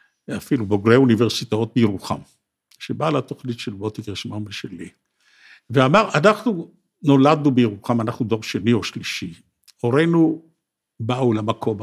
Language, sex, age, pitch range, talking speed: Hebrew, male, 60-79, 125-195 Hz, 110 wpm